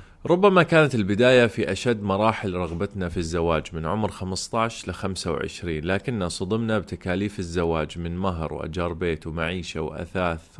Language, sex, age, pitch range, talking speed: Arabic, male, 30-49, 85-105 Hz, 135 wpm